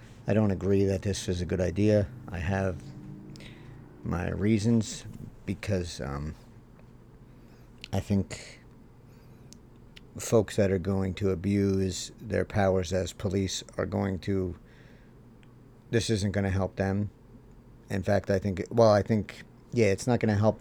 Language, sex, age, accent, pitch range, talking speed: English, male, 50-69, American, 95-115 Hz, 145 wpm